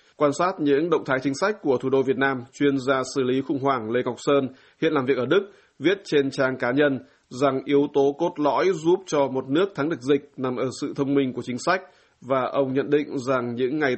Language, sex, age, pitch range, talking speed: Vietnamese, male, 20-39, 130-145 Hz, 250 wpm